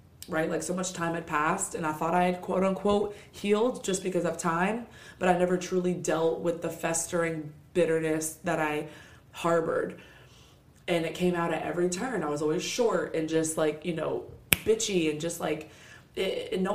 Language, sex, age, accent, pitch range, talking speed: English, female, 20-39, American, 160-180 Hz, 185 wpm